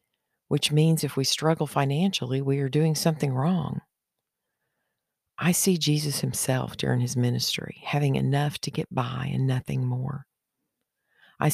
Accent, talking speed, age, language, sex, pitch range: American, 140 wpm, 50-69, English, female, 135-155 Hz